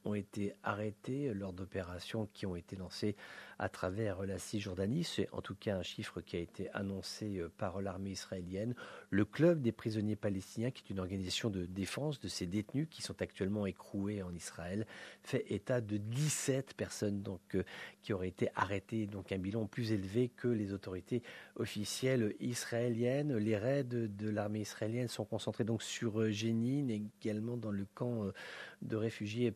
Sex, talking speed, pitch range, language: male, 175 wpm, 100-120 Hz, English